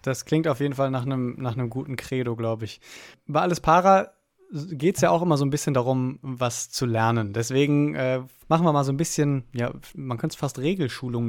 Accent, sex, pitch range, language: German, male, 125-150 Hz, German